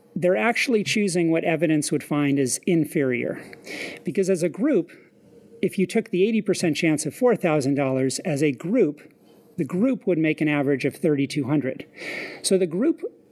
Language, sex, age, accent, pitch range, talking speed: English, male, 40-59, American, 155-195 Hz, 160 wpm